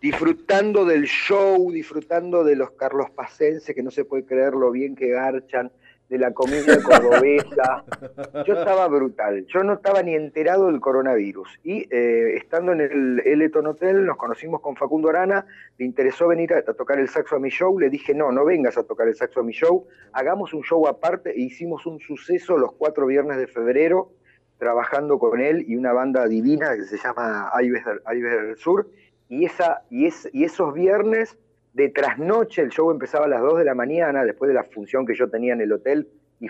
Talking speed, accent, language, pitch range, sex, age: 200 wpm, Argentinian, Spanish, 125-195 Hz, male, 40-59